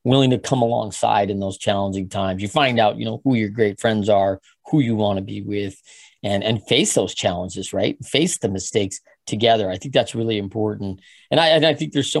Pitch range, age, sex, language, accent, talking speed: 105-140 Hz, 40-59, male, English, American, 225 wpm